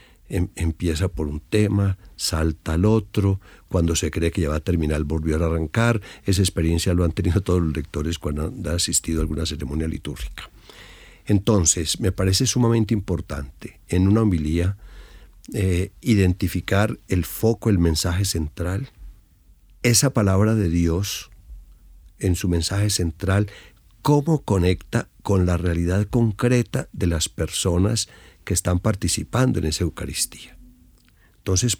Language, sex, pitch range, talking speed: Spanish, male, 85-105 Hz, 135 wpm